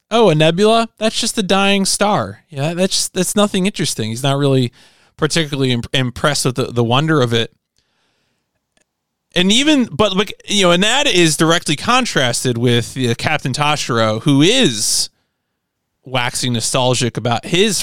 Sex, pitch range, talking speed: male, 115-160 Hz, 160 wpm